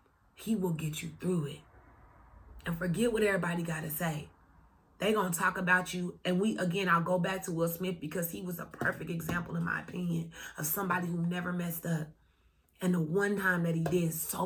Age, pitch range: 20-39, 165-220 Hz